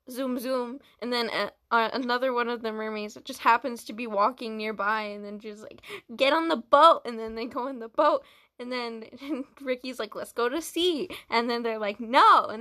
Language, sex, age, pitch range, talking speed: English, female, 10-29, 220-280 Hz, 220 wpm